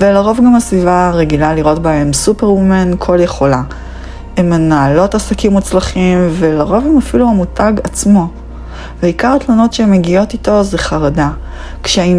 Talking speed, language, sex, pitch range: 130 wpm, Hebrew, female, 145-180 Hz